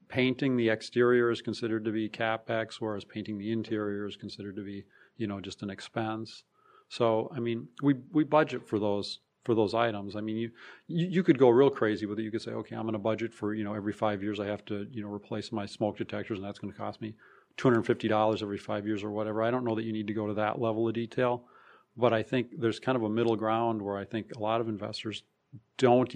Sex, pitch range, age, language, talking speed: male, 105-120 Hz, 40-59, English, 245 wpm